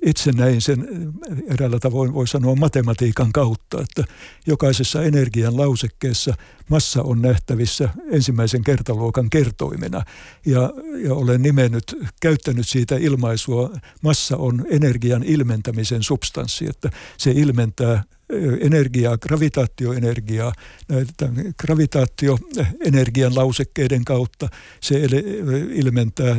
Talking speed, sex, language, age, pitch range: 95 wpm, male, Finnish, 60-79, 120-145 Hz